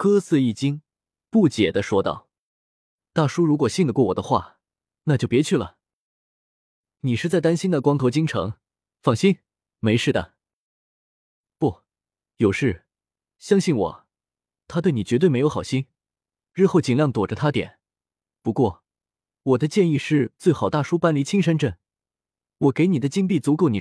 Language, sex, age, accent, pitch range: Chinese, male, 20-39, native, 115-180 Hz